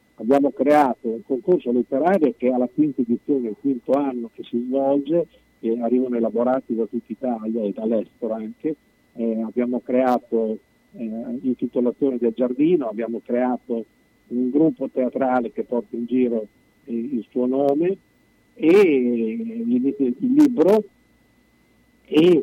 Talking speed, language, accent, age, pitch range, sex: 135 wpm, Italian, native, 50-69, 115-145 Hz, male